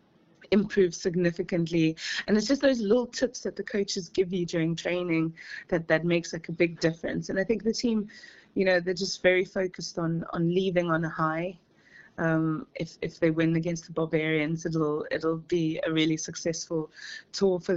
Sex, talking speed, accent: female, 185 wpm, British